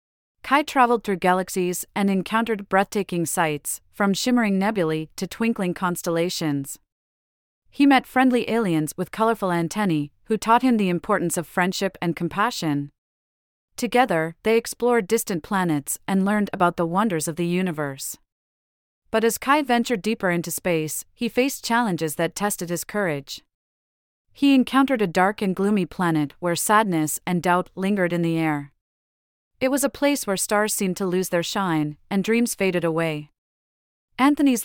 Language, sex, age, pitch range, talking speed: English, female, 30-49, 165-215 Hz, 150 wpm